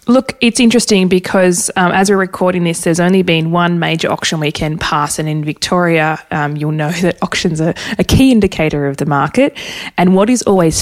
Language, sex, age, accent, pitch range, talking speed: English, female, 20-39, Australian, 155-185 Hz, 200 wpm